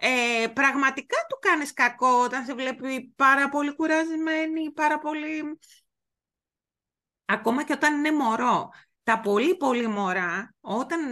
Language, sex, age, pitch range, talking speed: Greek, female, 30-49, 210-290 Hz, 115 wpm